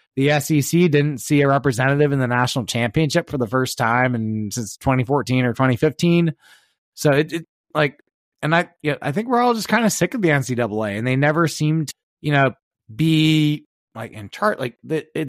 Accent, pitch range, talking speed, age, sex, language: American, 130-155 Hz, 185 wpm, 20-39, male, English